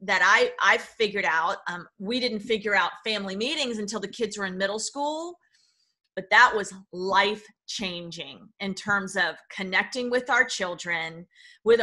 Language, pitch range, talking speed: English, 190-240 Hz, 160 wpm